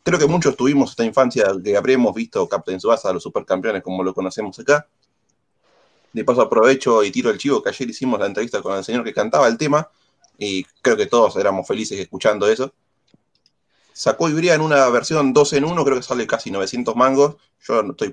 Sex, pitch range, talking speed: male, 115-165 Hz, 200 wpm